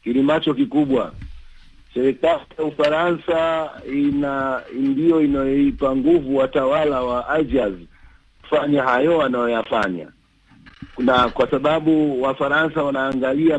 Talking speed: 95 wpm